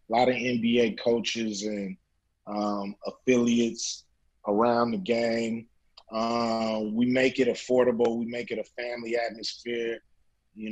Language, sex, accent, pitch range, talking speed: English, male, American, 110-130 Hz, 130 wpm